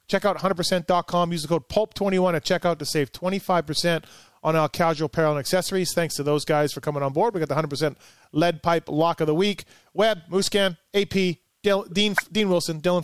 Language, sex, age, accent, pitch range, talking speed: English, male, 30-49, American, 150-185 Hz, 200 wpm